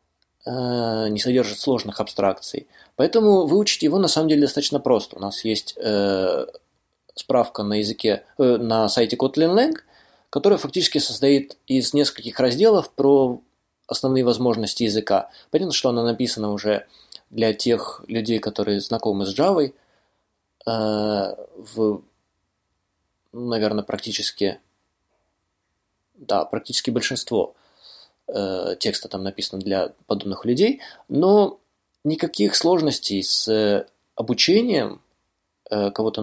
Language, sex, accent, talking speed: Russian, male, native, 105 wpm